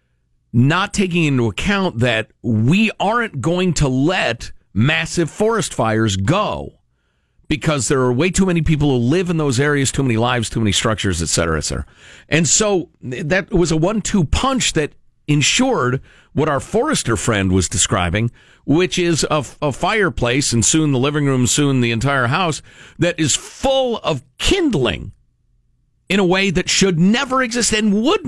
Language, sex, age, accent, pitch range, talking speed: English, male, 50-69, American, 110-170 Hz, 170 wpm